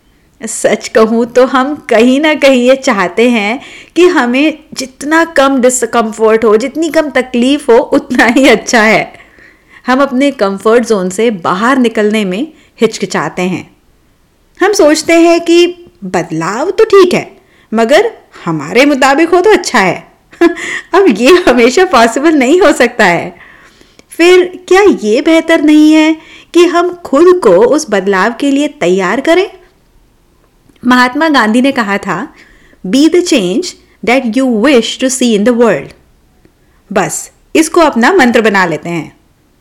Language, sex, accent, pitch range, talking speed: Hindi, female, native, 225-330 Hz, 140 wpm